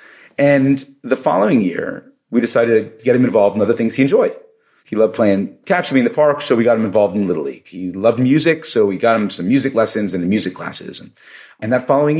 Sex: male